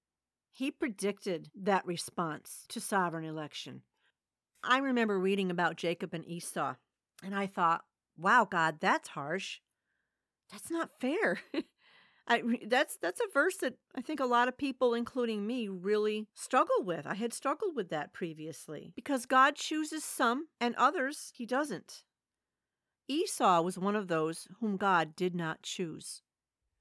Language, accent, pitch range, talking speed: English, American, 170-240 Hz, 145 wpm